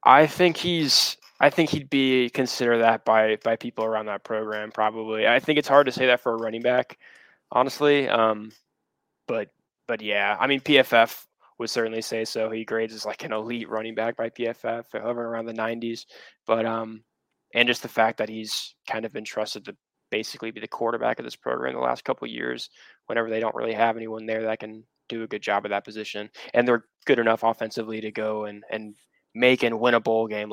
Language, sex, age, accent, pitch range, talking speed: English, male, 20-39, American, 110-120 Hz, 215 wpm